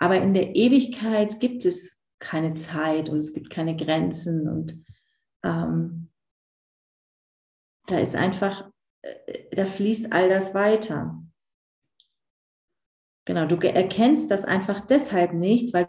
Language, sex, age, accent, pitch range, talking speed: German, female, 40-59, German, 170-230 Hz, 115 wpm